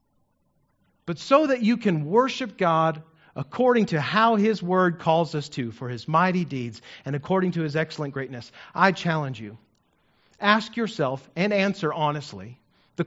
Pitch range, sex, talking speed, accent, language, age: 150-205 Hz, male, 155 wpm, American, English, 40-59